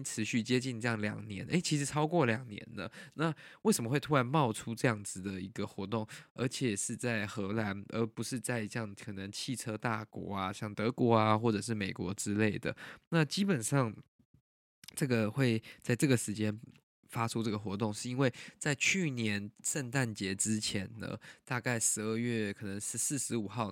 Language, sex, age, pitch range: Chinese, male, 20-39, 105-135 Hz